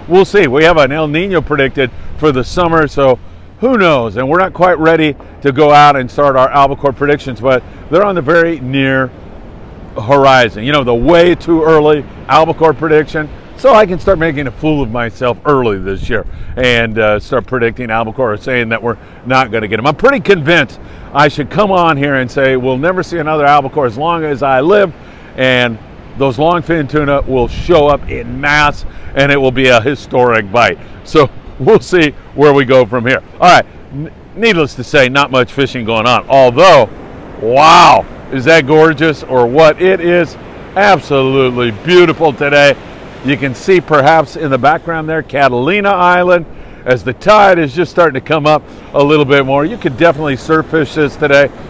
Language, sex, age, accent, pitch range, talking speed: English, male, 50-69, American, 125-160 Hz, 190 wpm